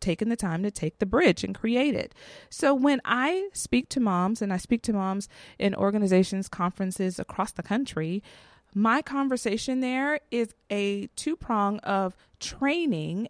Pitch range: 185-235 Hz